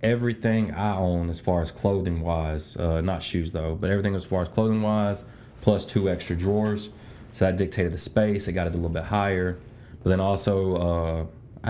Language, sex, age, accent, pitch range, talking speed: English, male, 20-39, American, 85-100 Hz, 200 wpm